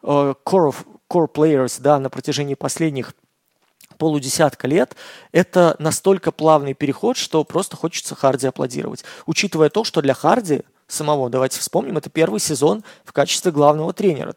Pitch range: 145-180 Hz